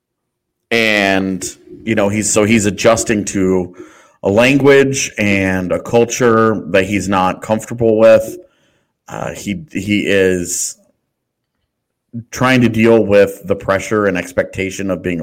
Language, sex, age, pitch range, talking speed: English, male, 30-49, 95-125 Hz, 125 wpm